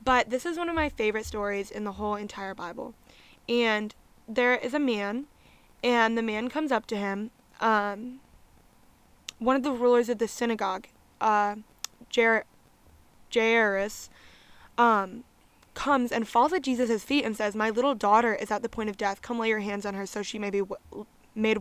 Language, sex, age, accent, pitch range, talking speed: English, female, 10-29, American, 210-250 Hz, 180 wpm